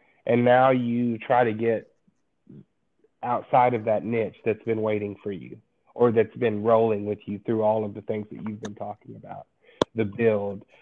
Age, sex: 30-49, male